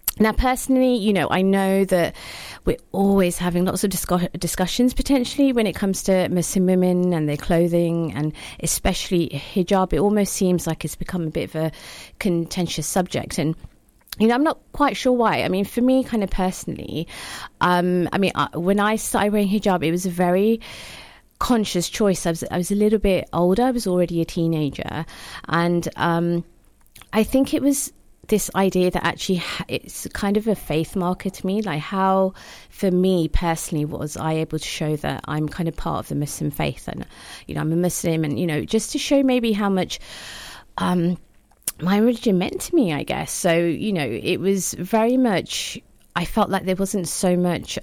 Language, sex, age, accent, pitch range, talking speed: English, female, 30-49, British, 165-210 Hz, 190 wpm